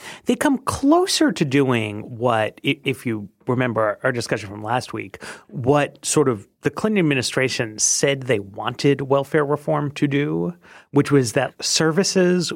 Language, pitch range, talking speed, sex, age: English, 120-180 Hz, 150 wpm, male, 30-49